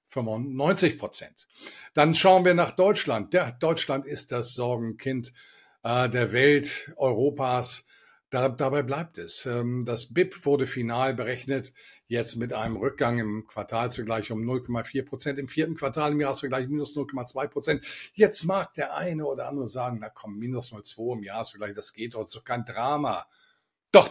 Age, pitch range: 50-69, 115-150 Hz